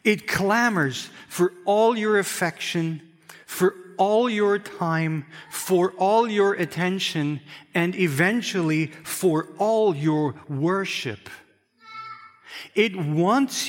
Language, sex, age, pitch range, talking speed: English, male, 50-69, 145-195 Hz, 95 wpm